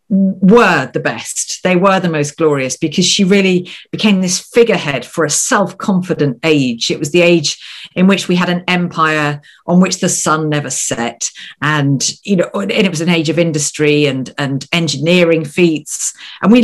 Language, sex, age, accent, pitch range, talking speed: English, female, 50-69, British, 150-200 Hz, 180 wpm